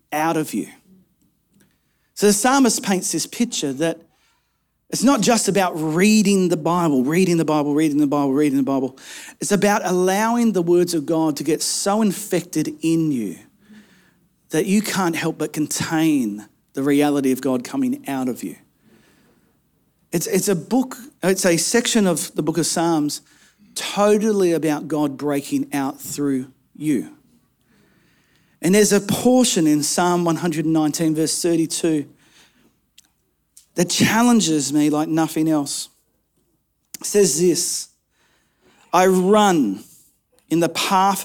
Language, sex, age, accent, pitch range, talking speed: English, male, 40-59, Australian, 150-195 Hz, 140 wpm